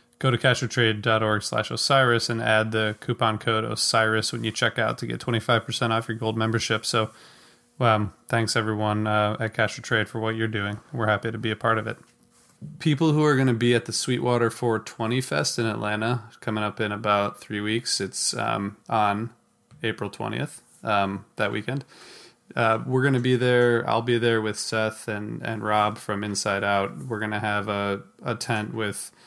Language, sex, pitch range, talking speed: English, male, 105-115 Hz, 195 wpm